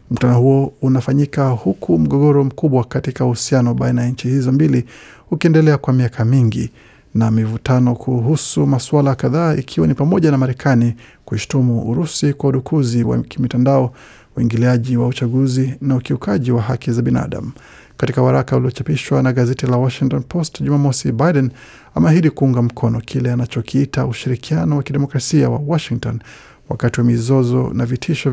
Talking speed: 145 wpm